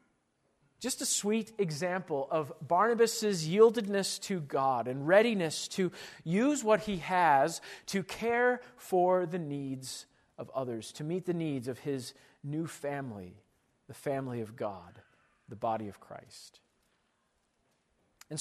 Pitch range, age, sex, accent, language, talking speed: 140-205 Hz, 40-59, male, American, English, 130 wpm